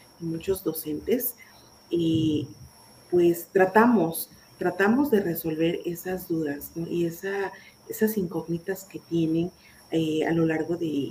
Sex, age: female, 40-59